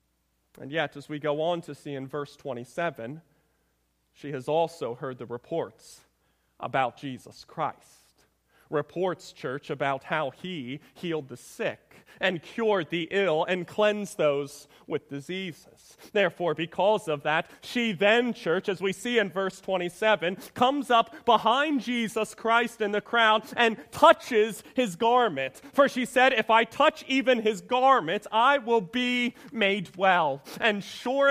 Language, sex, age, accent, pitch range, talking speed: English, male, 30-49, American, 170-265 Hz, 150 wpm